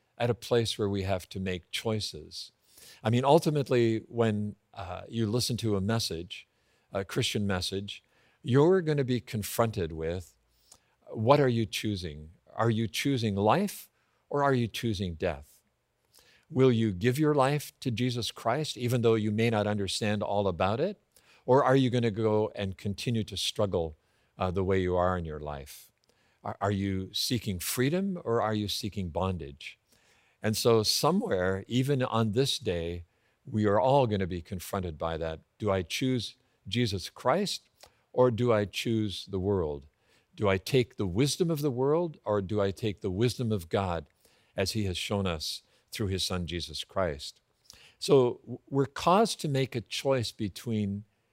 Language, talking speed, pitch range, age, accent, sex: English, 165 wpm, 95-125 Hz, 50-69, American, male